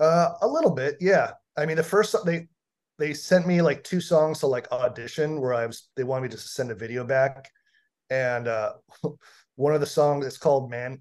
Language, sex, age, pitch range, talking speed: English, male, 30-49, 125-165 Hz, 215 wpm